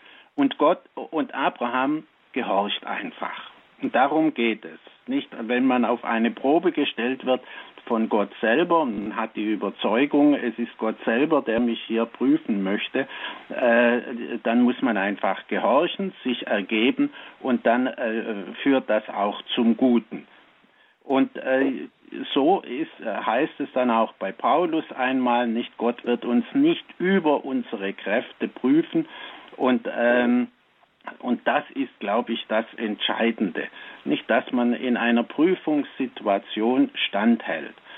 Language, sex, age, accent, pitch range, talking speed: German, male, 60-79, German, 115-140 Hz, 125 wpm